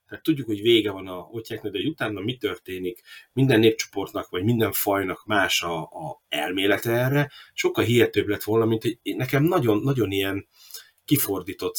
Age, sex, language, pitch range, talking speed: 30-49, male, Hungarian, 105-150 Hz, 165 wpm